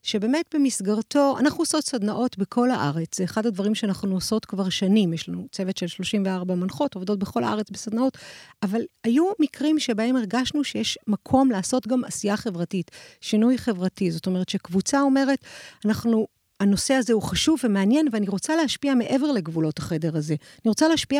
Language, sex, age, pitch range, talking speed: Hebrew, female, 50-69, 200-255 Hz, 160 wpm